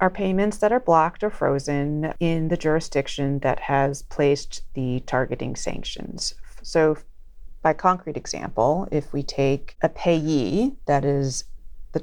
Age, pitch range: 30-49, 140-170 Hz